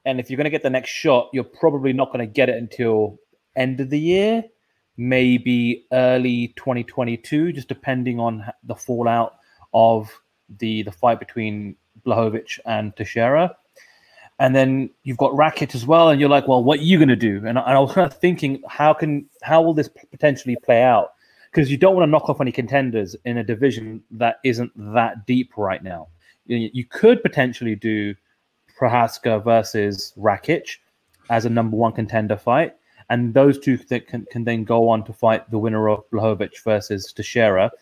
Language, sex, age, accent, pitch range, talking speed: English, male, 30-49, British, 110-135 Hz, 185 wpm